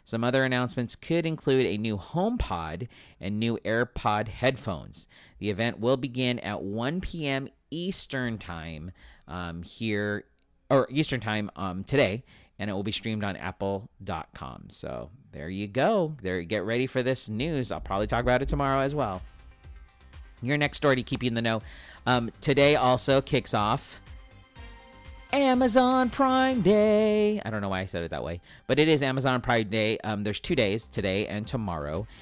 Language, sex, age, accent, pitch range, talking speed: English, male, 40-59, American, 100-130 Hz, 170 wpm